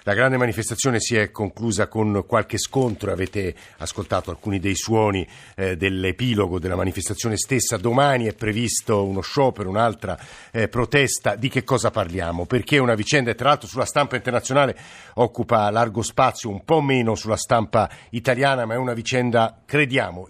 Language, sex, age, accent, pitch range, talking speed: Italian, male, 50-69, native, 105-125 Hz, 155 wpm